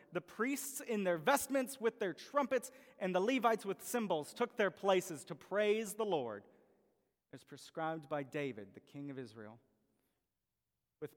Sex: male